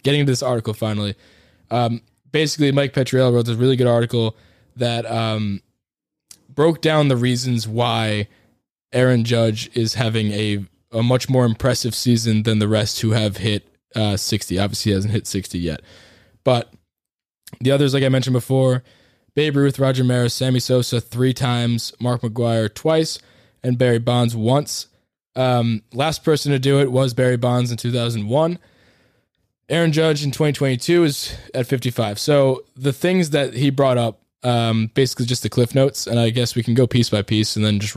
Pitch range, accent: 110-130 Hz, American